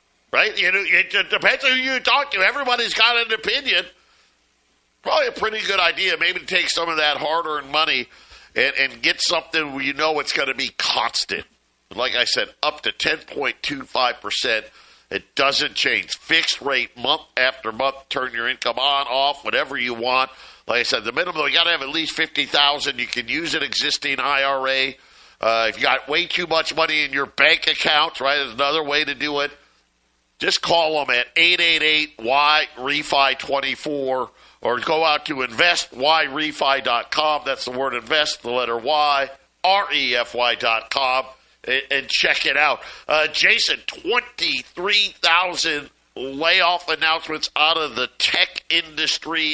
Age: 50-69